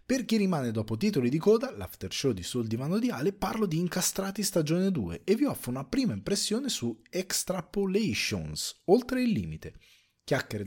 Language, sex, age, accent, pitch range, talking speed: Italian, male, 30-49, native, 115-175 Hz, 170 wpm